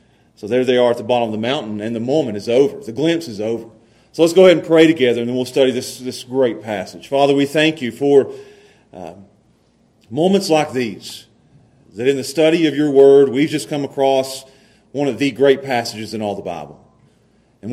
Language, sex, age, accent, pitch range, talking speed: English, male, 40-59, American, 115-145 Hz, 215 wpm